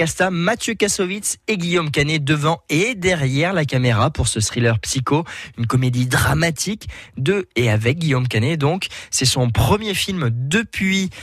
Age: 20-39